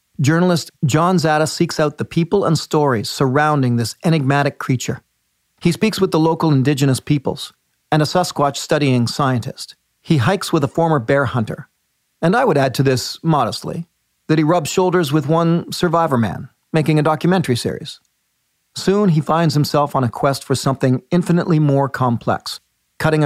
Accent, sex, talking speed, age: American, male, 165 wpm, 40-59